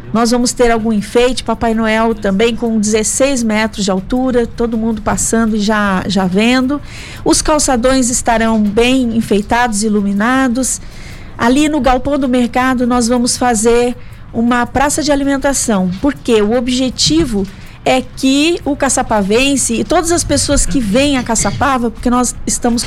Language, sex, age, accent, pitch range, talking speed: Portuguese, female, 40-59, Brazilian, 220-270 Hz, 145 wpm